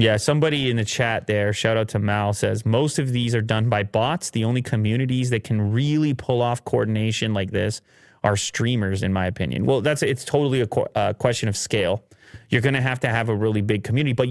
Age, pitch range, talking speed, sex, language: 30-49, 110-135 Hz, 230 wpm, male, English